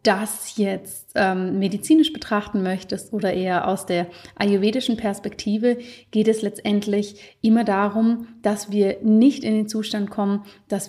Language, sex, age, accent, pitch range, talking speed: German, female, 30-49, German, 195-230 Hz, 140 wpm